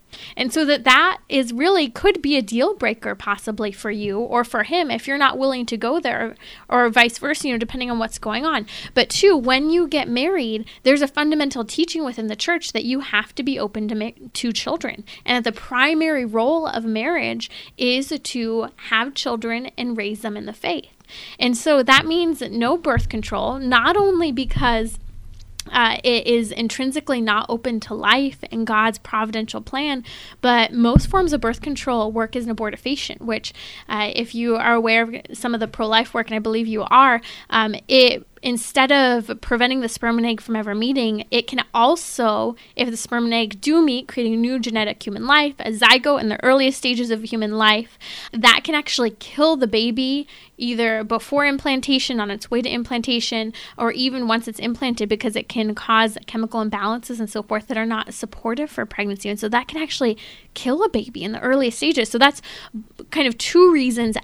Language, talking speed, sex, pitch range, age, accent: English, 200 wpm, female, 225-270 Hz, 20-39, American